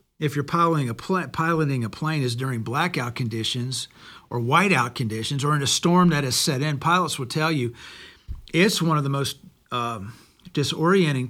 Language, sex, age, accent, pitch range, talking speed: English, male, 50-69, American, 130-170 Hz, 170 wpm